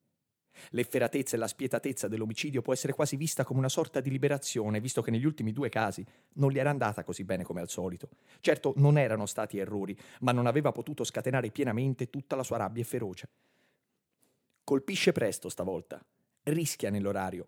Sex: male